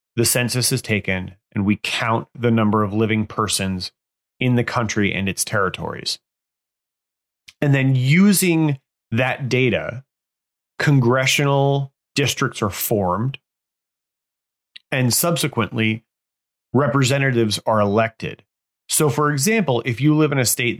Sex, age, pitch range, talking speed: male, 30-49, 105-135 Hz, 120 wpm